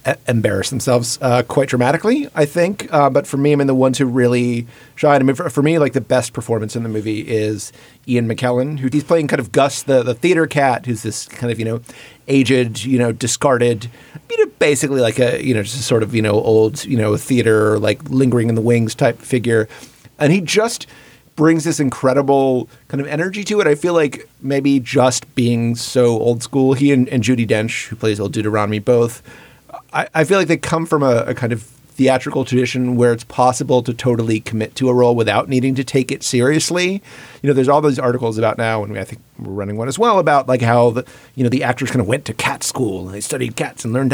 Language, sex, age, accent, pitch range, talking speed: English, male, 30-49, American, 115-140 Hz, 230 wpm